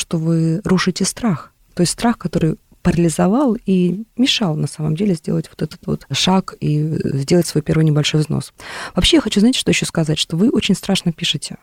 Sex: female